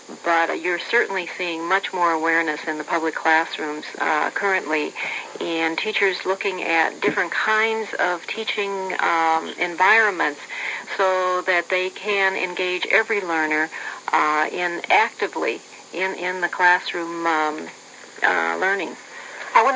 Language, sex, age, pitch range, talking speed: English, female, 50-69, 160-250 Hz, 130 wpm